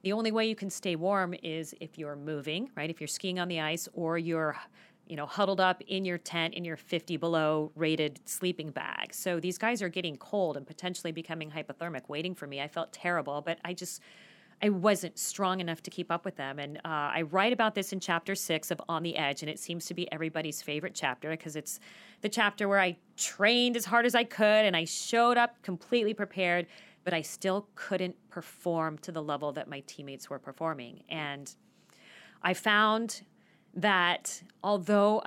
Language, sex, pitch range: English, female, 160-210 Hz